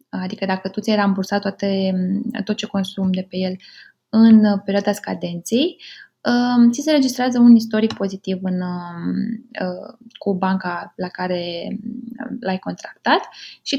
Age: 20-39